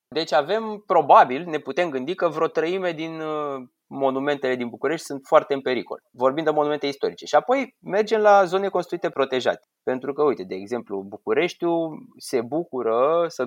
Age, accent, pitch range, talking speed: 20-39, native, 130-185 Hz, 160 wpm